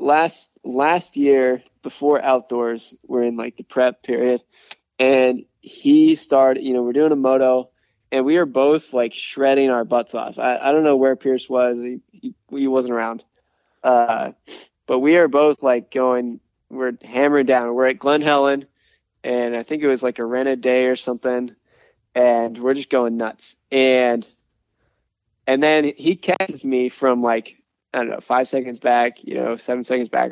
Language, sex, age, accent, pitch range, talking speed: English, male, 20-39, American, 120-140 Hz, 180 wpm